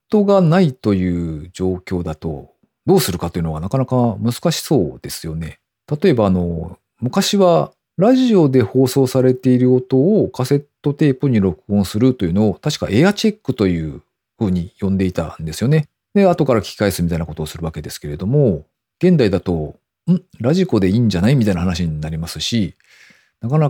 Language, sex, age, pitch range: Japanese, male, 40-59, 90-150 Hz